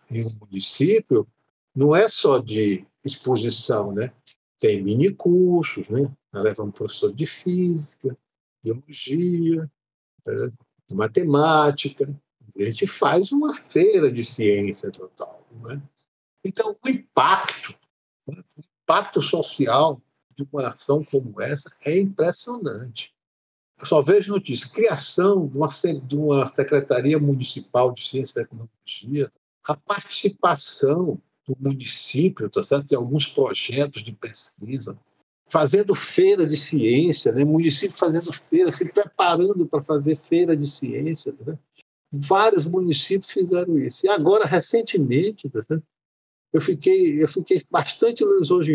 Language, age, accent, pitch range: Portuguese, 50-69, Brazilian, 130-180 Hz